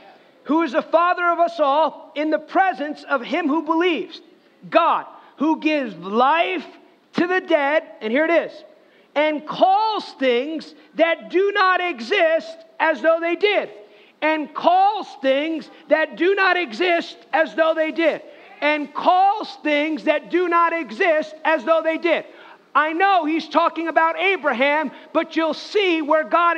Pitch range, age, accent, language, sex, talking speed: 295-340 Hz, 40-59, American, English, male, 155 wpm